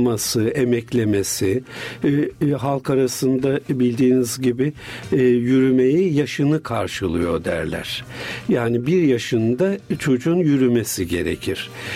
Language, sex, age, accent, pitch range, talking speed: Turkish, male, 60-79, native, 115-145 Hz, 90 wpm